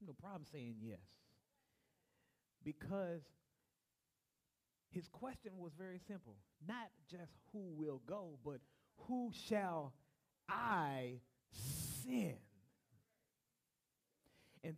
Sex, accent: male, American